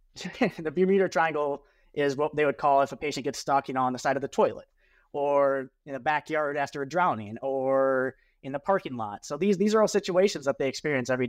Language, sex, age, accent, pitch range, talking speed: English, male, 30-49, American, 130-150 Hz, 230 wpm